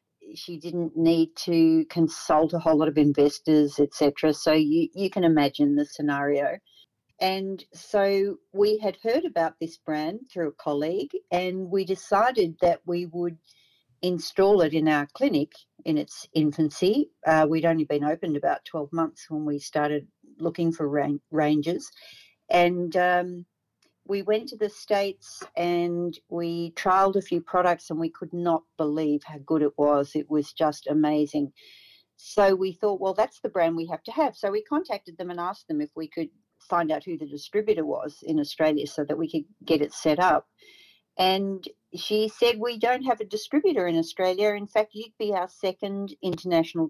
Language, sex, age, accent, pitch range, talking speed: English, female, 50-69, Australian, 155-195 Hz, 175 wpm